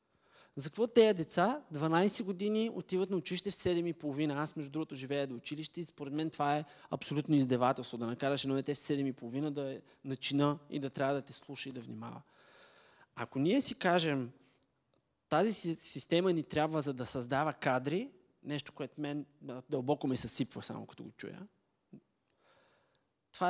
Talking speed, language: 170 wpm, Bulgarian